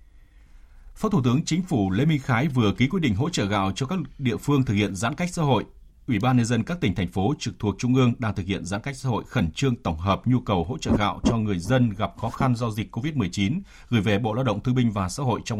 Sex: male